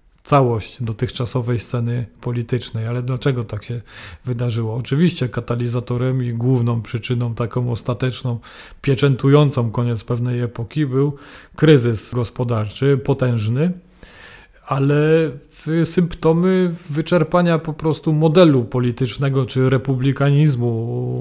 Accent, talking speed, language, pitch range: native, 95 wpm, Polish, 120-140 Hz